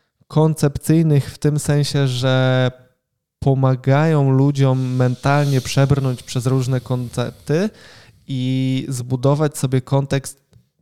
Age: 20-39